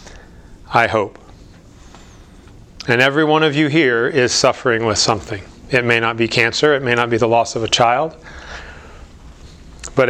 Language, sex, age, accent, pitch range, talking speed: English, male, 40-59, American, 85-135 Hz, 160 wpm